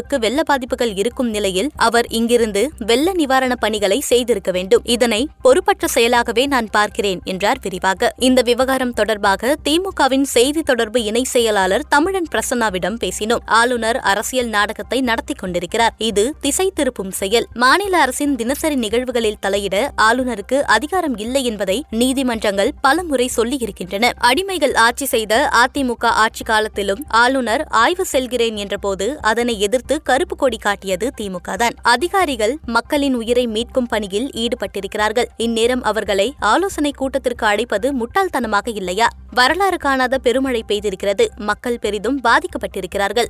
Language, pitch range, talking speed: Tamil, 215-270 Hz, 120 wpm